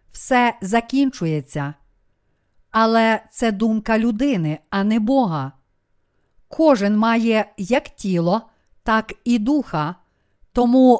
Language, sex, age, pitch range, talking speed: Ukrainian, female, 50-69, 195-255 Hz, 95 wpm